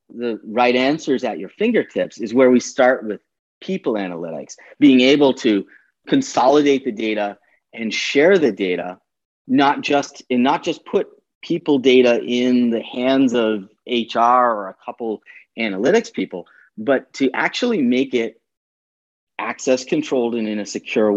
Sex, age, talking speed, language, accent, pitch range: male, 30-49, 145 wpm, English, American, 110-150 Hz